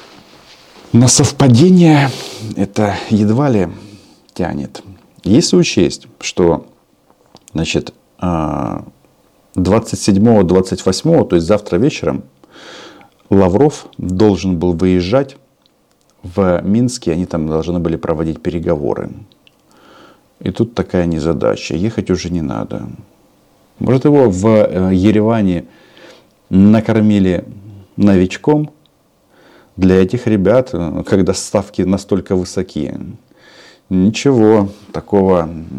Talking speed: 85 wpm